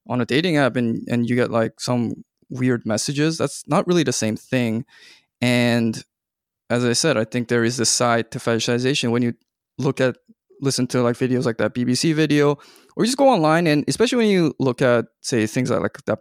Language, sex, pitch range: English, male, 115-140 Hz